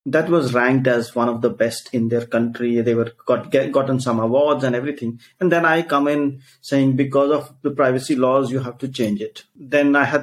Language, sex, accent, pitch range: English, male, Indian, 125-145 Hz